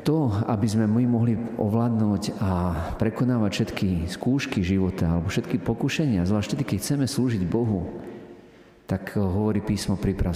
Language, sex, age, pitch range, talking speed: Slovak, male, 40-59, 90-115 Hz, 140 wpm